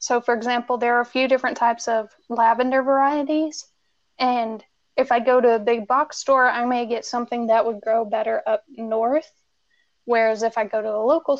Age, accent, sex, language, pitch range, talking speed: 10-29, American, female, English, 225-255 Hz, 200 wpm